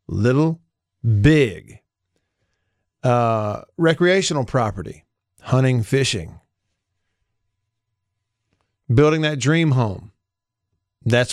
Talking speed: 65 wpm